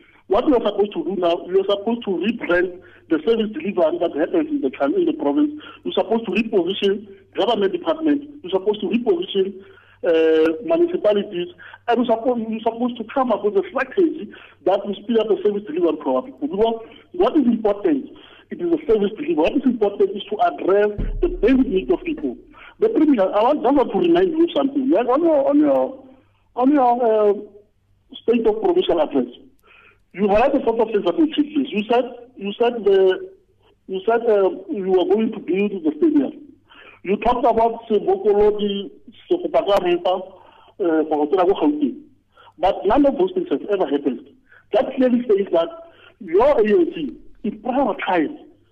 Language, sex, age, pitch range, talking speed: English, male, 60-79, 200-315 Hz, 170 wpm